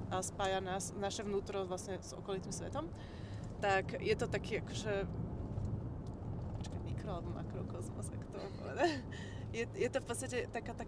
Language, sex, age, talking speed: Slovak, female, 20-39, 150 wpm